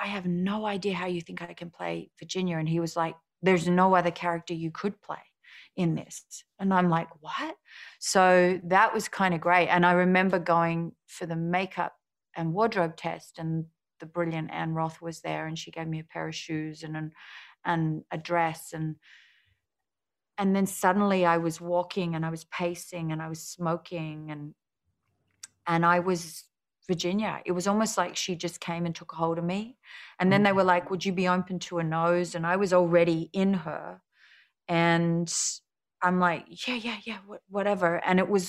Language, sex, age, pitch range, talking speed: English, female, 30-49, 165-185 Hz, 195 wpm